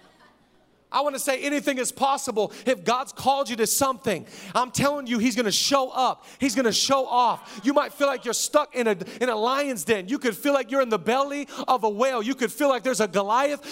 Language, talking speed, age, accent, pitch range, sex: English, 240 wpm, 40-59, American, 235-290 Hz, male